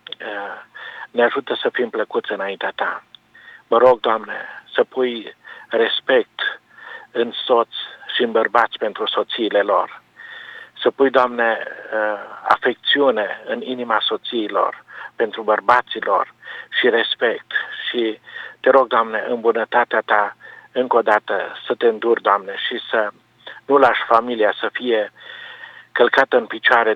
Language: Romanian